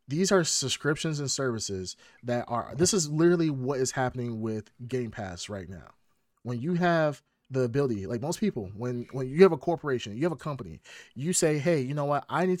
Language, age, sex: English, 30-49, male